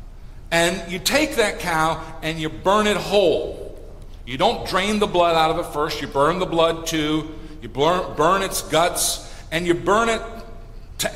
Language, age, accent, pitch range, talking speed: English, 50-69, American, 155-210 Hz, 185 wpm